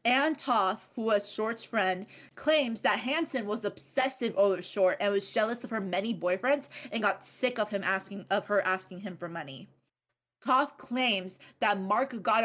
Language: English